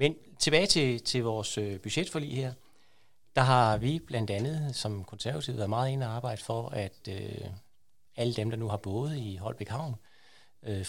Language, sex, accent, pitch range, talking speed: Danish, male, native, 105-130 Hz, 175 wpm